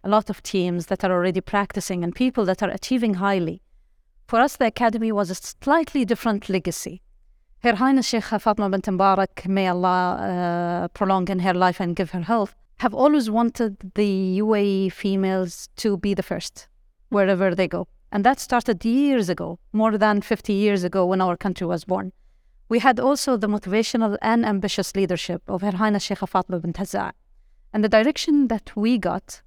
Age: 30-49